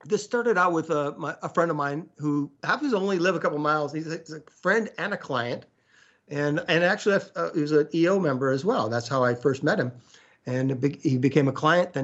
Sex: male